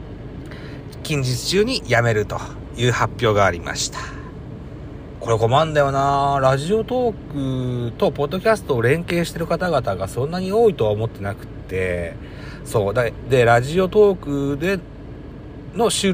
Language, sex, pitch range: Japanese, male, 105-145 Hz